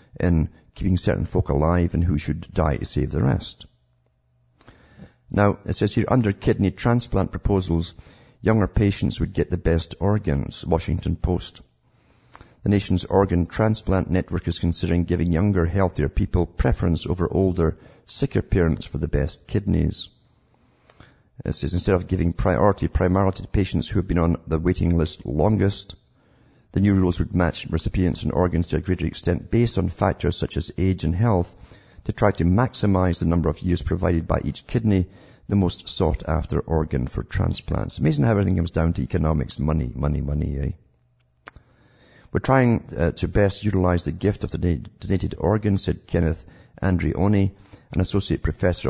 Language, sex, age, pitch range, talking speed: English, male, 50-69, 80-100 Hz, 165 wpm